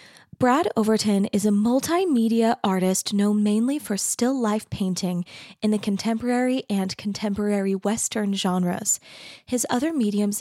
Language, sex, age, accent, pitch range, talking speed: English, female, 20-39, American, 190-230 Hz, 125 wpm